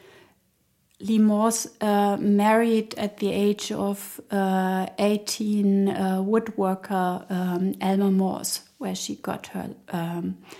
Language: English